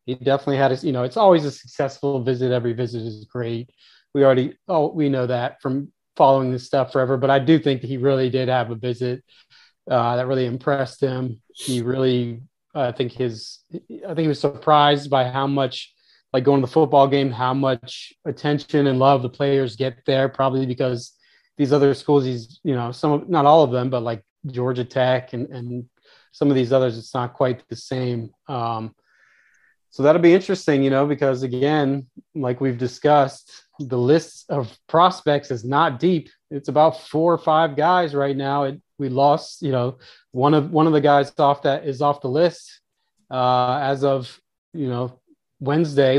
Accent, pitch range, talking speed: American, 125-145 Hz, 190 wpm